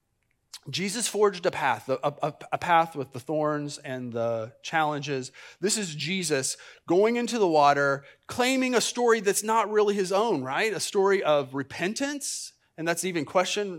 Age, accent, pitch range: 30-49, American, 130-180 Hz